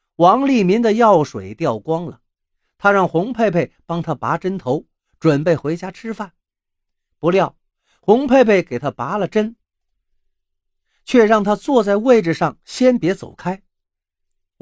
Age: 50-69